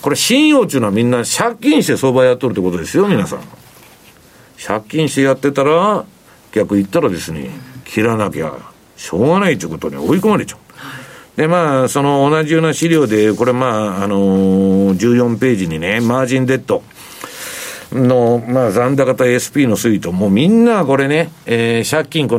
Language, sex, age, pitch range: Japanese, male, 60-79, 100-155 Hz